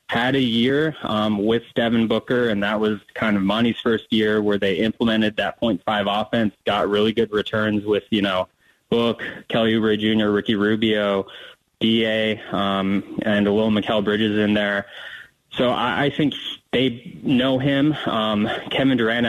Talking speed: 165 wpm